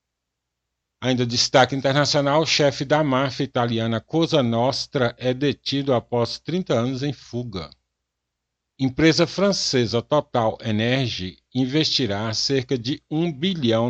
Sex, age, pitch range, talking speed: male, 60-79, 105-130 Hz, 110 wpm